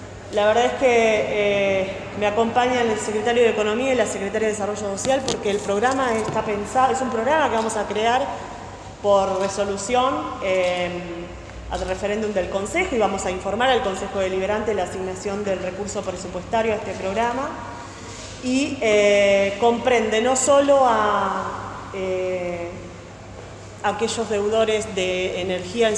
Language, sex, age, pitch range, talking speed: Spanish, female, 20-39, 190-230 Hz, 145 wpm